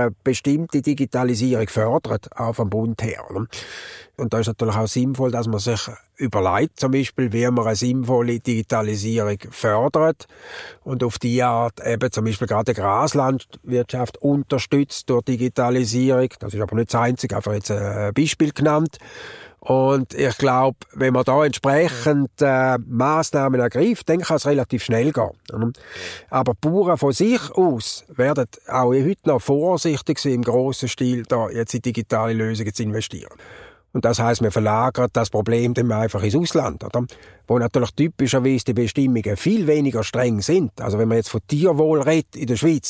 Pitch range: 115-140 Hz